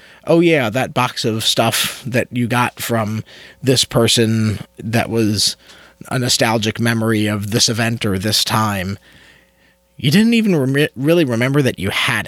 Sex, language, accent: male, English, American